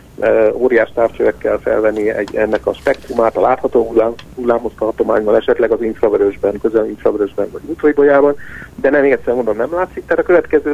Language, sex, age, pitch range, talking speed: Hungarian, male, 50-69, 115-185 Hz, 145 wpm